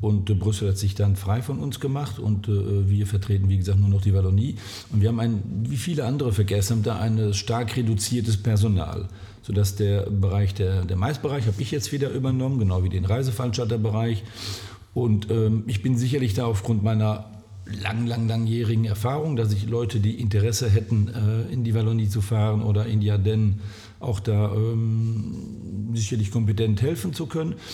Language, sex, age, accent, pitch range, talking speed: German, male, 50-69, German, 105-120 Hz, 175 wpm